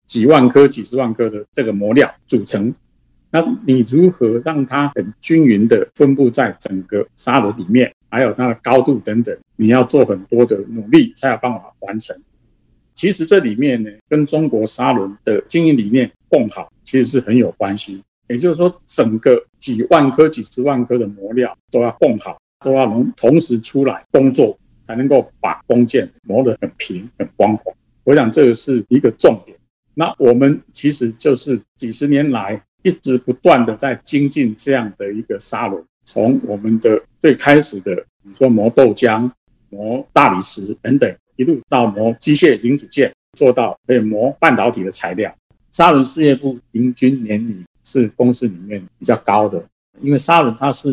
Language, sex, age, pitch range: Chinese, male, 50-69, 110-145 Hz